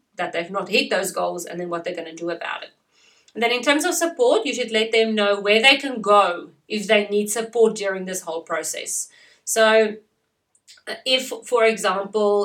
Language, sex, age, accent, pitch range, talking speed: English, female, 30-49, Australian, 195-240 Hz, 200 wpm